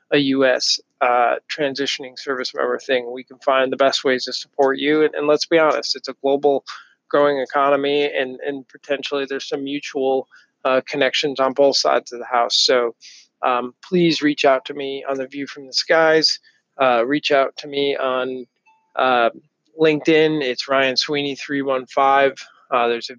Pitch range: 130-145 Hz